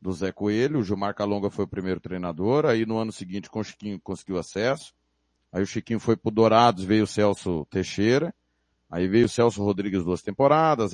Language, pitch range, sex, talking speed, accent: Portuguese, 90-135 Hz, male, 195 wpm, Brazilian